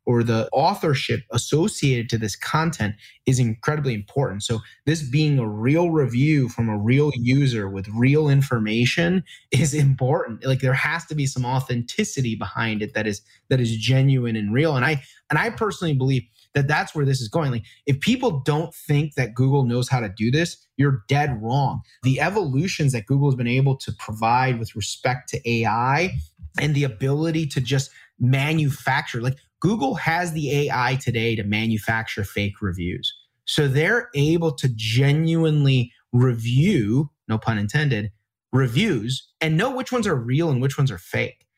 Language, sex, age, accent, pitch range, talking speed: English, male, 30-49, American, 115-150 Hz, 170 wpm